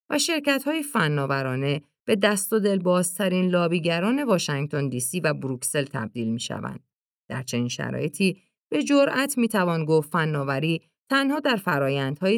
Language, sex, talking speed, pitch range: Persian, female, 130 wpm, 140-215 Hz